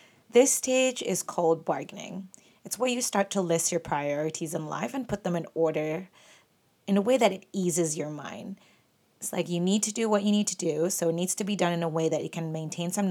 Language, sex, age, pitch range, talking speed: English, female, 30-49, 165-205 Hz, 245 wpm